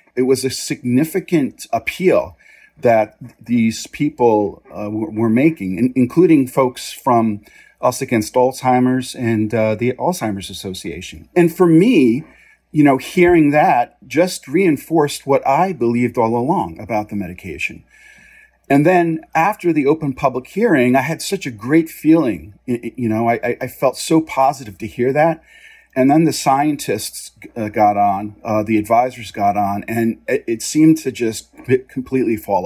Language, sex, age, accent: English, male, 40-59, American